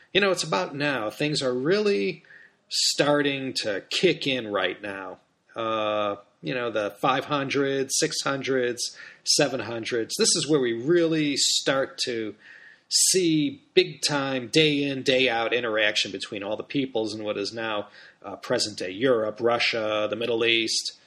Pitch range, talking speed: 115-150 Hz, 150 wpm